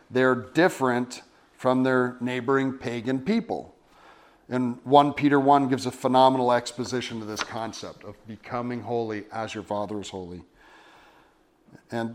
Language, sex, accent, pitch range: English, male, American, 115-140 Hz